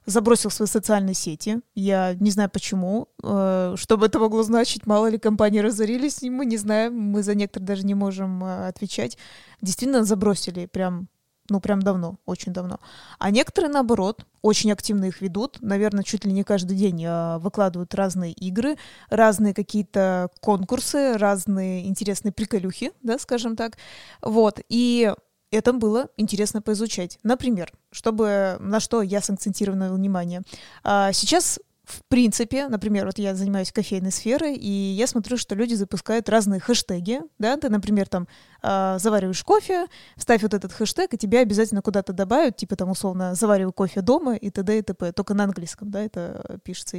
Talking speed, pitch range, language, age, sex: 155 wpm, 195-225 Hz, Russian, 20-39, female